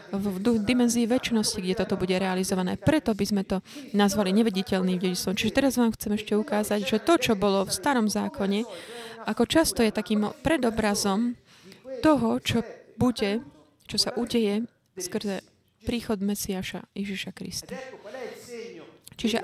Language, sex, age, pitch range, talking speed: Slovak, female, 20-39, 195-235 Hz, 135 wpm